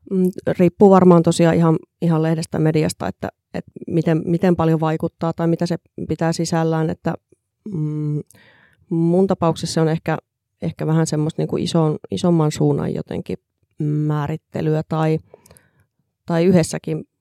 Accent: native